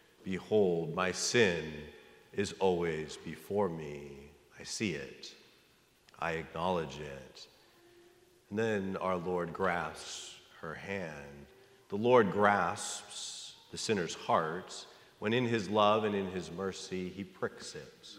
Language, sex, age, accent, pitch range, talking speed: English, male, 40-59, American, 85-110 Hz, 120 wpm